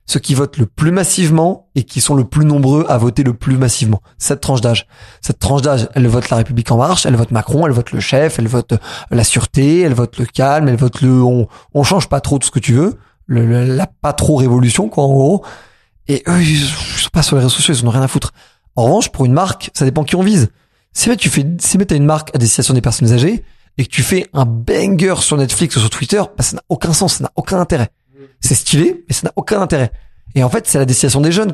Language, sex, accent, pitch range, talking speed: French, male, French, 125-160 Hz, 270 wpm